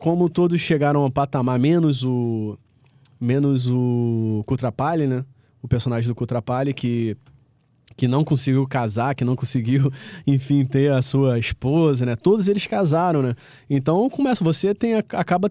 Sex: male